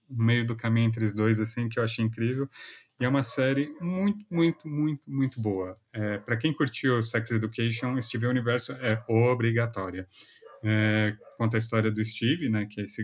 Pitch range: 110-140 Hz